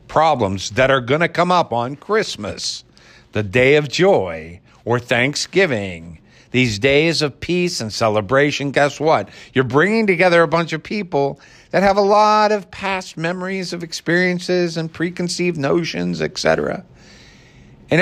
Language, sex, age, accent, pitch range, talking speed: English, male, 50-69, American, 120-170 Hz, 145 wpm